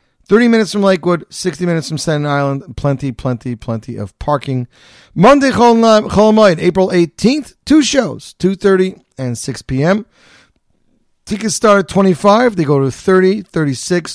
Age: 40-59